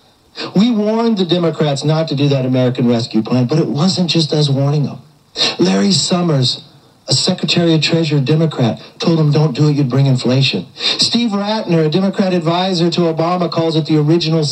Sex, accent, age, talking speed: male, American, 60-79, 180 wpm